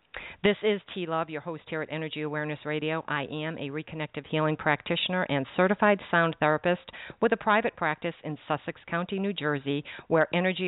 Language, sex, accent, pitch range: English, female, American, 150-185 Hz